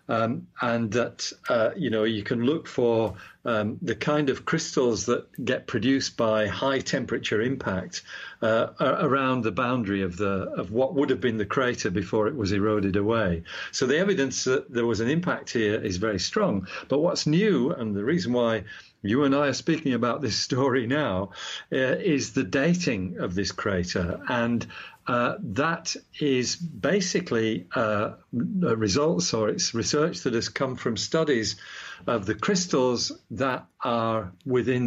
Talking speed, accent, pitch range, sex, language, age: 165 wpm, British, 110-135 Hz, male, English, 50-69